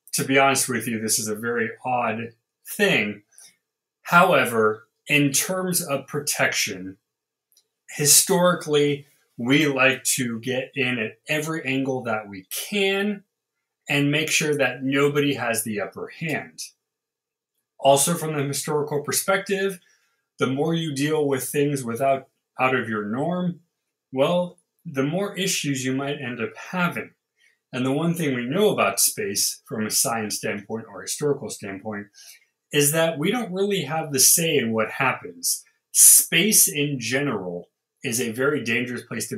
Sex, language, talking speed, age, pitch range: male, English, 150 wpm, 30-49, 115-155 Hz